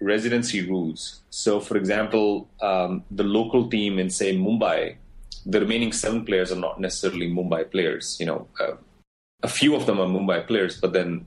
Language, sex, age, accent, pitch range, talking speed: English, male, 30-49, Indian, 95-125 Hz, 175 wpm